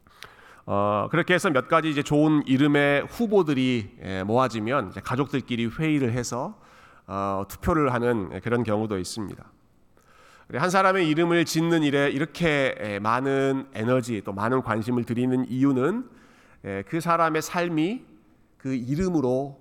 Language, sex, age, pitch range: Korean, male, 40-59, 115-155 Hz